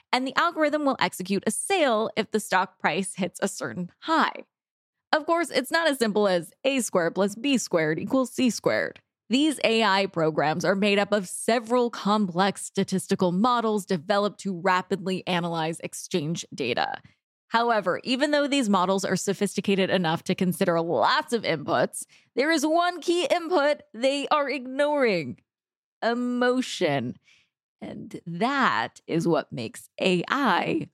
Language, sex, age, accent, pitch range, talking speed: English, female, 20-39, American, 185-275 Hz, 145 wpm